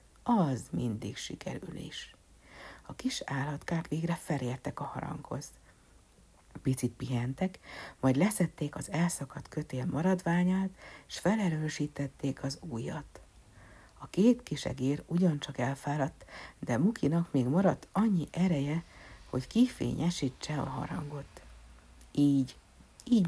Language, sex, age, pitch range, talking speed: Hungarian, female, 60-79, 130-175 Hz, 105 wpm